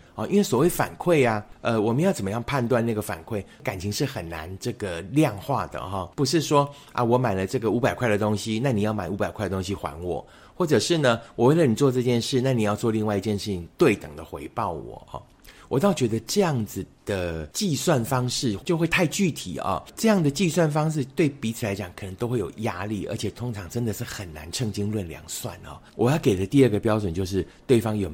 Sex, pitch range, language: male, 95-130 Hz, Chinese